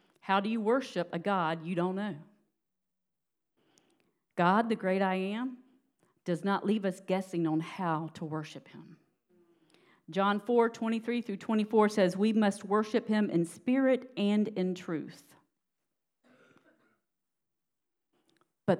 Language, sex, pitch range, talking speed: English, female, 165-210 Hz, 130 wpm